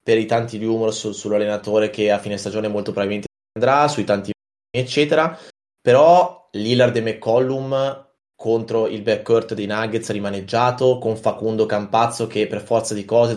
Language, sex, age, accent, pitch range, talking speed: Italian, male, 20-39, native, 105-120 Hz, 155 wpm